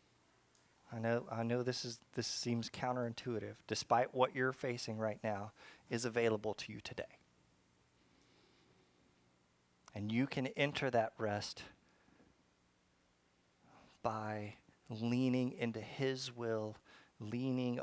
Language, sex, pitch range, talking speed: English, male, 110-130 Hz, 110 wpm